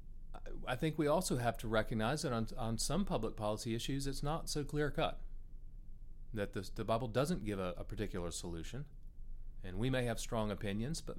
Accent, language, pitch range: American, English, 95-120 Hz